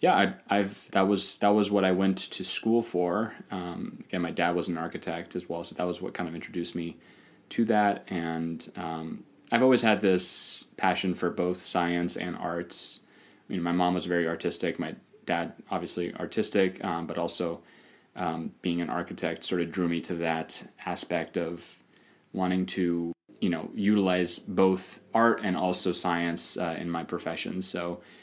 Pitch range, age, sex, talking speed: 85-95 Hz, 20-39, male, 180 wpm